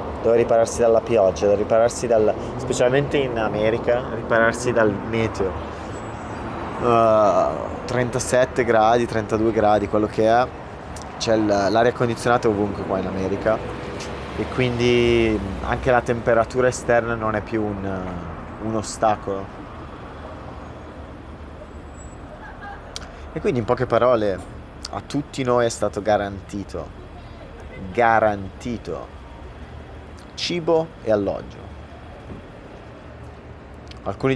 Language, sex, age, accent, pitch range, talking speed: Italian, male, 30-49, native, 95-120 Hz, 100 wpm